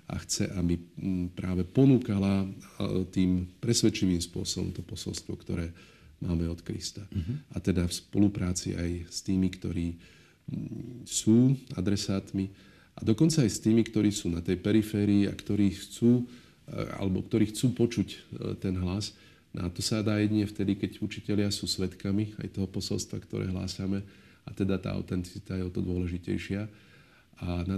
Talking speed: 150 wpm